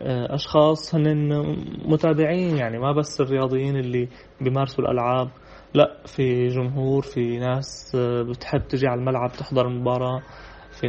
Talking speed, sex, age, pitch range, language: 120 wpm, male, 20-39, 125-140 Hz, Arabic